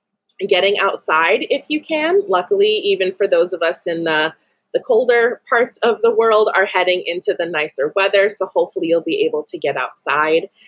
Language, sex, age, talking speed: English, female, 20-39, 185 wpm